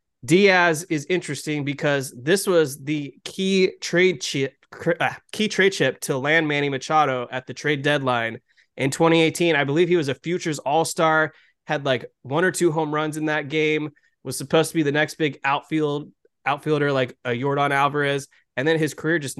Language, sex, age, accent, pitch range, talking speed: English, male, 20-39, American, 125-155 Hz, 180 wpm